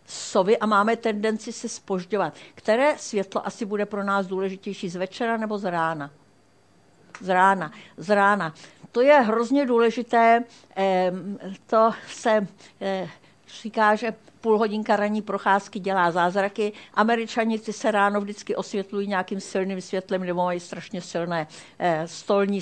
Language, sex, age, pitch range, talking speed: Czech, female, 60-79, 180-220 Hz, 130 wpm